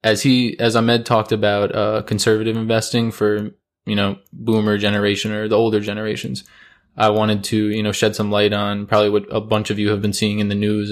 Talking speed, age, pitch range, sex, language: 215 wpm, 20-39, 100-110 Hz, male, English